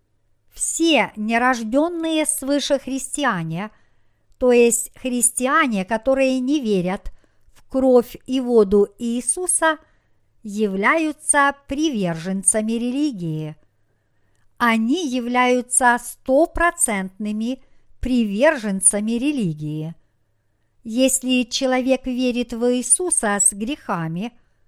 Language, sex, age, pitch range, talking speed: Russian, male, 50-69, 195-270 Hz, 75 wpm